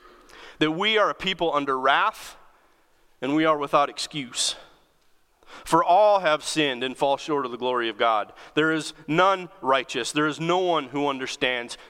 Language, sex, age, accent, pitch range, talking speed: English, male, 40-59, American, 140-175 Hz, 170 wpm